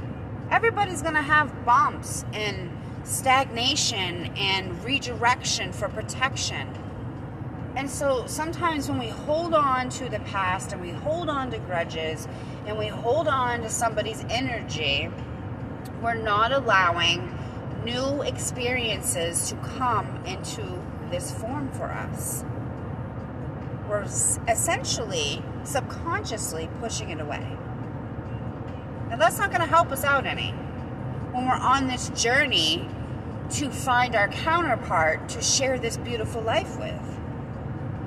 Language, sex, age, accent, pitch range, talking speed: English, female, 30-49, American, 120-145 Hz, 120 wpm